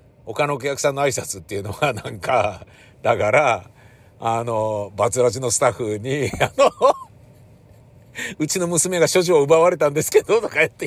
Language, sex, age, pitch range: Japanese, male, 50-69, 100-155 Hz